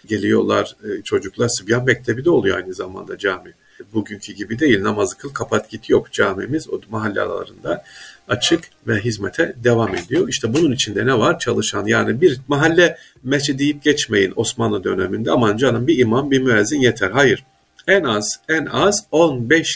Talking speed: 160 wpm